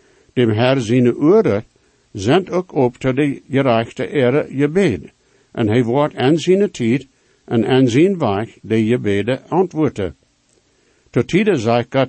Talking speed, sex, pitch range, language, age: 140 wpm, male, 115-145 Hz, English, 60-79